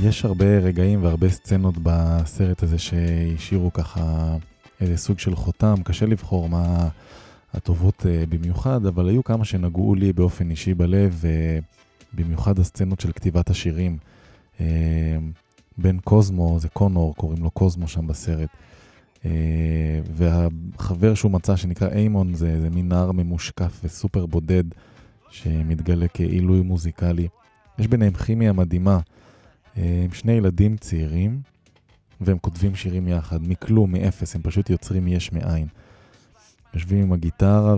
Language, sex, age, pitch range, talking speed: Hebrew, male, 20-39, 85-100 Hz, 130 wpm